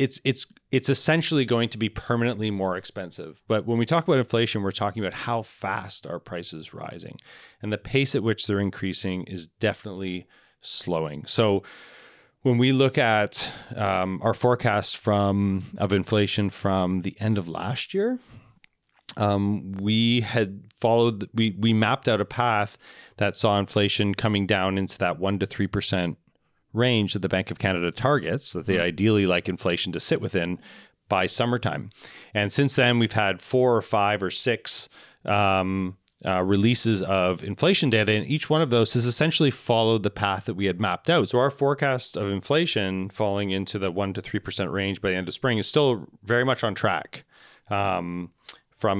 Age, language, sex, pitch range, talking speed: 30-49, English, male, 95-120 Hz, 180 wpm